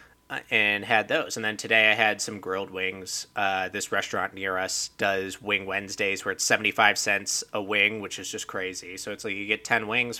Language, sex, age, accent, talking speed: English, male, 20-39, American, 210 wpm